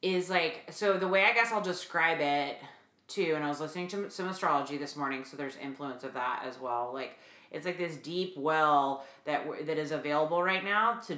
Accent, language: American, English